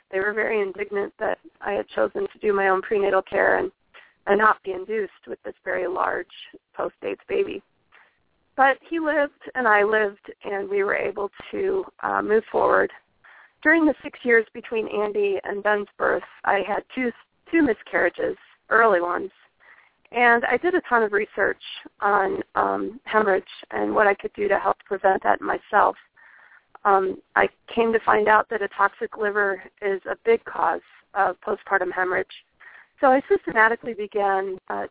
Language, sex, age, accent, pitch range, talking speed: English, female, 30-49, American, 195-290 Hz, 165 wpm